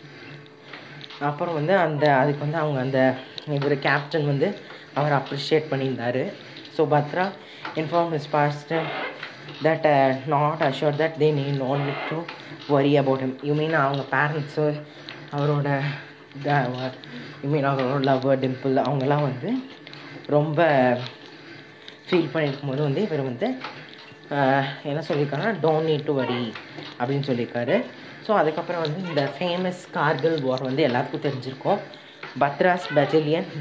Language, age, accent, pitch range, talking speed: Tamil, 20-39, native, 140-165 Hz, 125 wpm